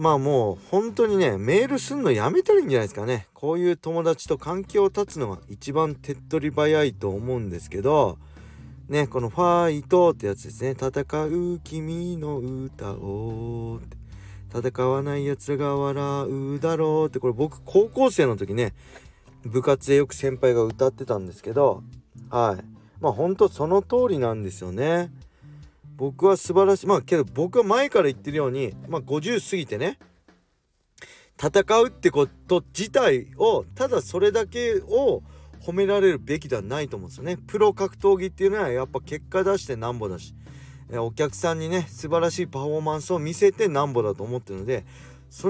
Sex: male